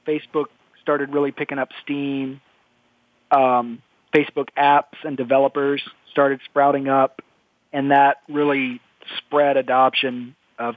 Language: English